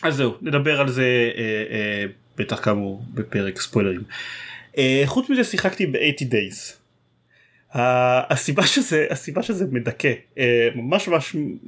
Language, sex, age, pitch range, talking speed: Hebrew, male, 30-49, 115-150 Hz, 125 wpm